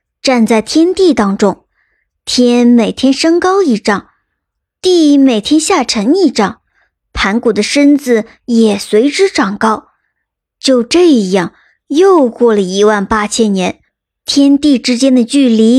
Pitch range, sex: 220-290 Hz, male